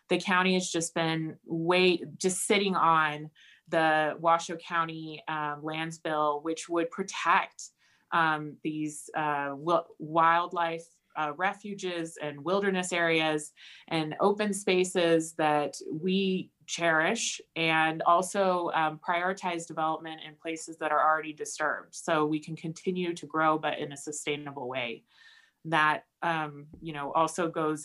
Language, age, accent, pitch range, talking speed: English, 20-39, American, 155-185 Hz, 130 wpm